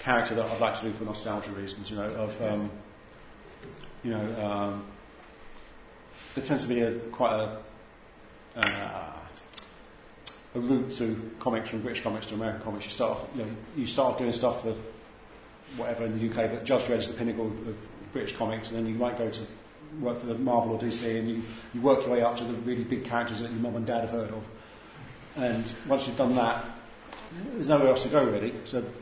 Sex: male